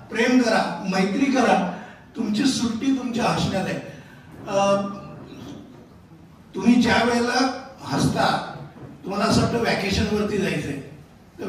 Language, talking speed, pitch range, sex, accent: Hindi, 90 wpm, 190-245 Hz, male, native